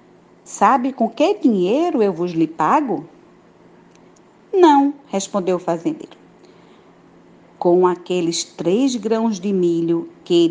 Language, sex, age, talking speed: Portuguese, female, 40-59, 110 wpm